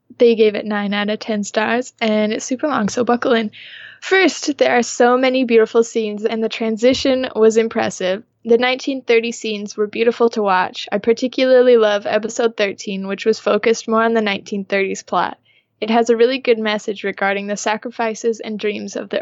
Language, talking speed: English, 185 wpm